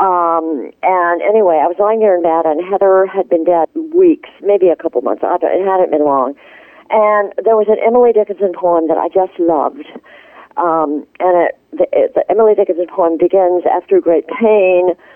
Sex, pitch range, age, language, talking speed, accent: female, 165-210 Hz, 50-69, English, 190 wpm, American